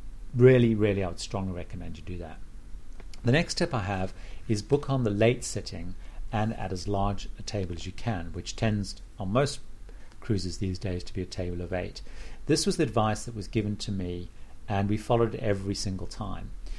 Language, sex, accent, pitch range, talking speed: English, male, British, 95-120 Hz, 205 wpm